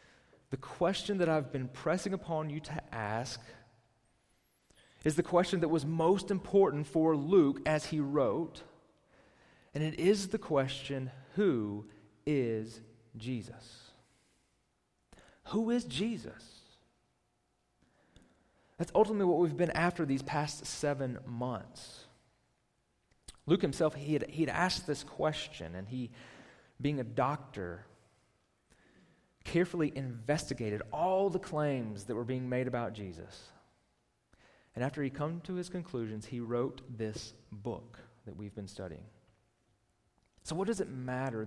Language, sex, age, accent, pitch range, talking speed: English, male, 30-49, American, 115-160 Hz, 125 wpm